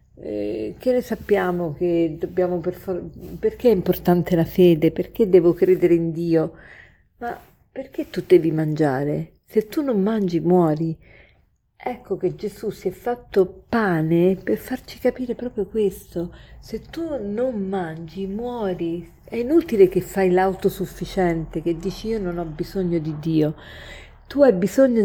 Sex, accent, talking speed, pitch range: female, native, 140 wpm, 175-225 Hz